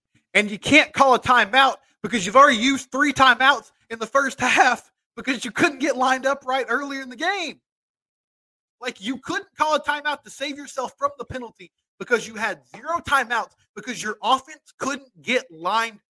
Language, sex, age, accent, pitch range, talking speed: English, male, 30-49, American, 175-265 Hz, 185 wpm